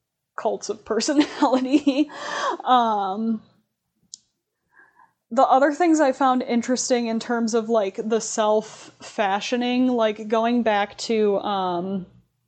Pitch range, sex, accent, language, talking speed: 200-235 Hz, female, American, English, 100 wpm